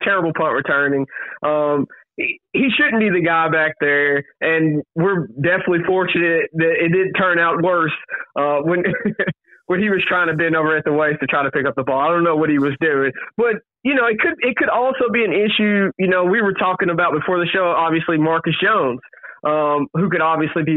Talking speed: 220 wpm